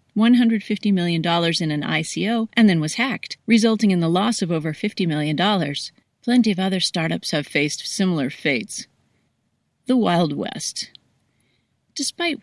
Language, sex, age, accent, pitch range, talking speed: English, female, 30-49, American, 165-210 Hz, 135 wpm